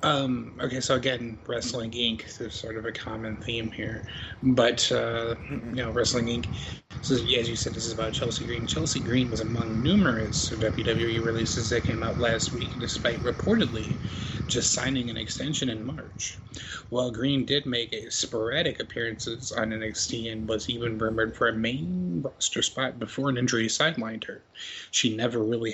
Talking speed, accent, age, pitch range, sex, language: 175 wpm, American, 30-49, 115-130 Hz, male, English